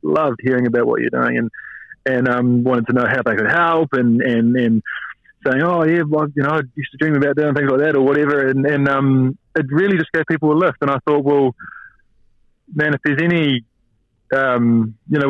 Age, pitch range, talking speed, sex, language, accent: 20-39, 115-135 Hz, 225 wpm, male, English, Australian